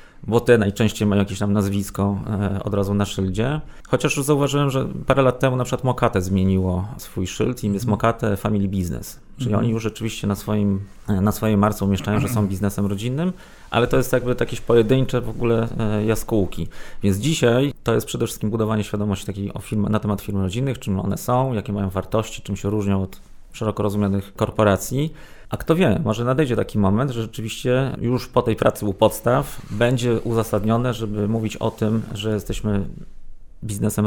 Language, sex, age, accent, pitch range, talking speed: Polish, male, 30-49, native, 100-120 Hz, 185 wpm